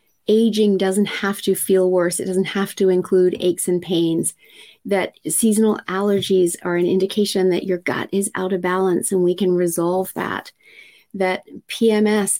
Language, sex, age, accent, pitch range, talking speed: English, female, 40-59, American, 175-210 Hz, 165 wpm